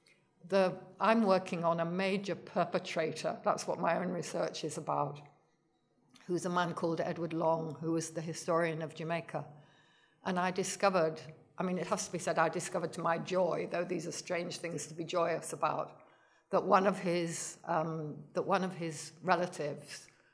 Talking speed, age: 175 wpm, 60-79